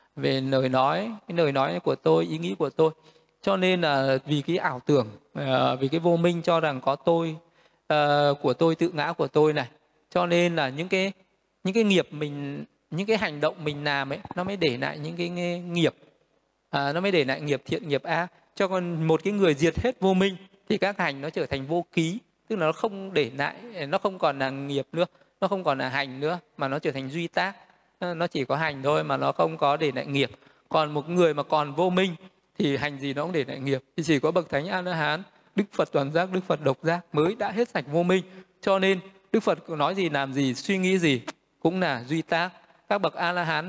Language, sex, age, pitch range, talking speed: Vietnamese, male, 20-39, 140-180 Hz, 235 wpm